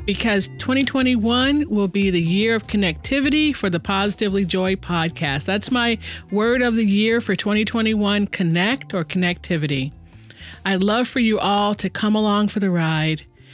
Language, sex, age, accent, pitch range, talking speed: English, female, 40-59, American, 185-245 Hz, 155 wpm